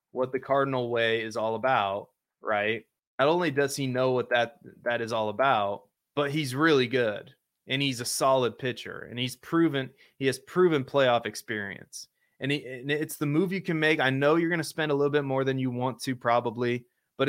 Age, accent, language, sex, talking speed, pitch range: 20-39, American, English, male, 210 wpm, 115-140 Hz